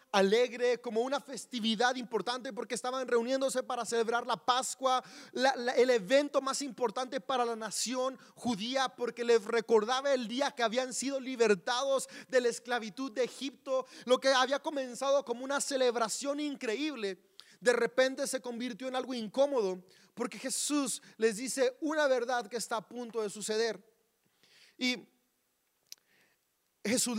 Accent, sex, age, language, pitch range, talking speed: Mexican, male, 30-49, Spanish, 210-260 Hz, 140 wpm